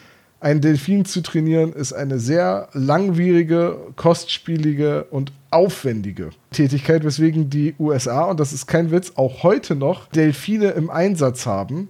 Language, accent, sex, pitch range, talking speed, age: German, German, male, 145-175 Hz, 135 wpm, 40-59